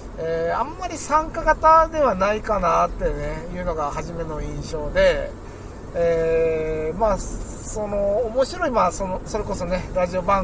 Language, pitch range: Japanese, 155-225 Hz